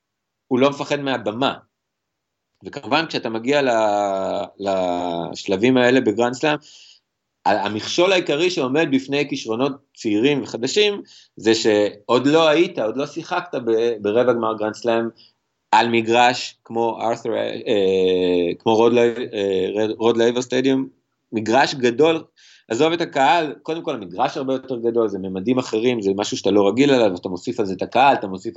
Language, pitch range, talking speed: Hebrew, 110-145 Hz, 140 wpm